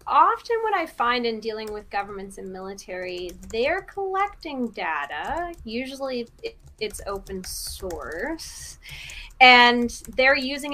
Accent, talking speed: American, 110 wpm